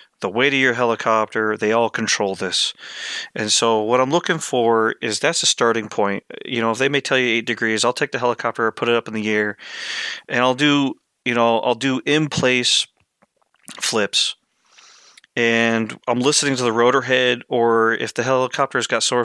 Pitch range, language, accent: 110-130 Hz, English, American